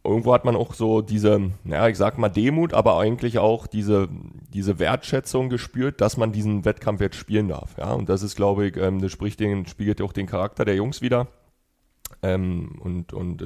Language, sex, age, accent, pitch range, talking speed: German, male, 30-49, German, 95-110 Hz, 205 wpm